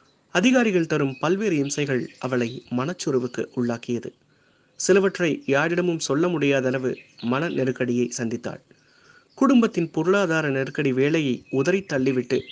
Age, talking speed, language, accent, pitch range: 30-49, 95 wpm, Tamil, native, 125-175 Hz